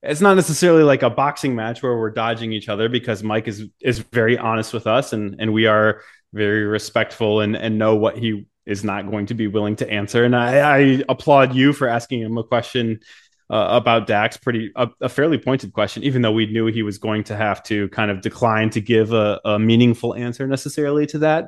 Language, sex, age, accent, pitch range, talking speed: English, male, 20-39, American, 110-130 Hz, 225 wpm